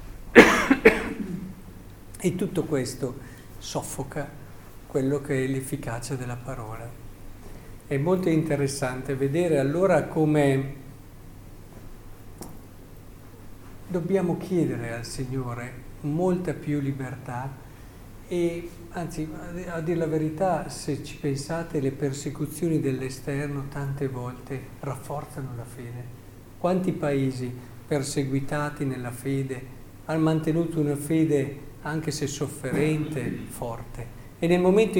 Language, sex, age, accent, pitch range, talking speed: Italian, male, 50-69, native, 120-155 Hz, 95 wpm